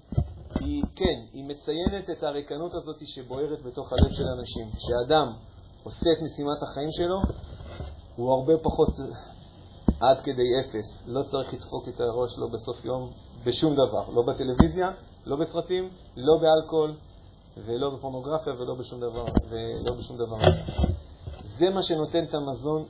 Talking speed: 115 wpm